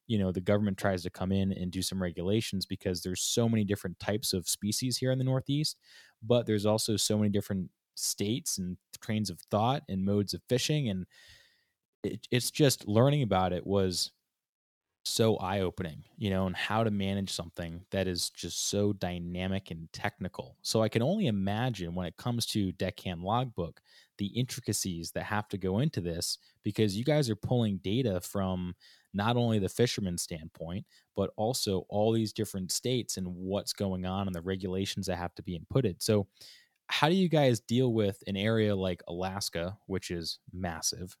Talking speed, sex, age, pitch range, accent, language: 180 wpm, male, 20-39, 90-110 Hz, American, English